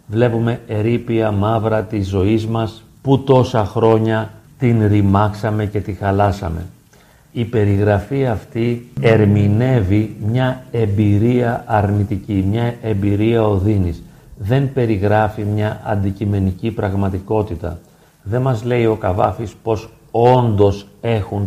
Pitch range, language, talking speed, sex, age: 100-120 Hz, Greek, 105 wpm, male, 40-59